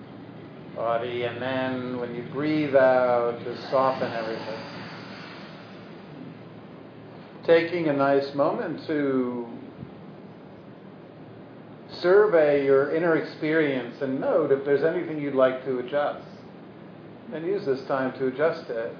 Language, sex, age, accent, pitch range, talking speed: English, male, 50-69, American, 130-155 Hz, 110 wpm